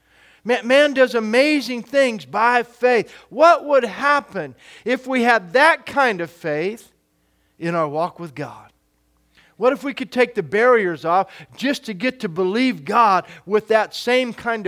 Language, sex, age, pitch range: English, male, 50-69, 175-245 Hz